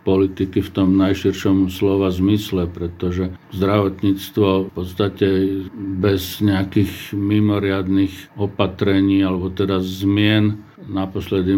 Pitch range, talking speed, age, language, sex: 95-105 Hz, 95 wpm, 50-69, Slovak, male